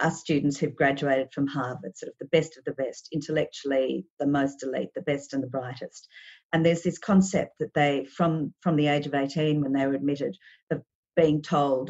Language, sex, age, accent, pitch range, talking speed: English, female, 50-69, Australian, 140-165 Hz, 205 wpm